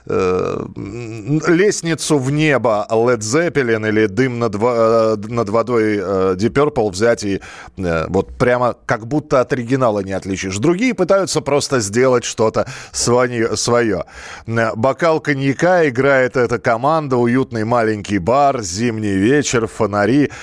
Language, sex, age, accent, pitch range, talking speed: Russian, male, 20-39, native, 105-140 Hz, 130 wpm